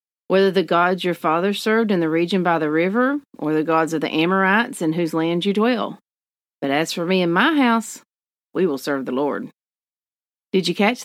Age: 40-59